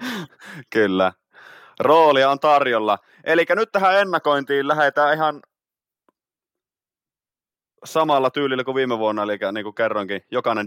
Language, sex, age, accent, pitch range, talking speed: Finnish, male, 30-49, native, 95-125 Hz, 105 wpm